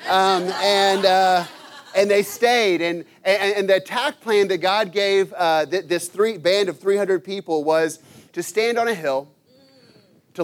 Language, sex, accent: English, male, American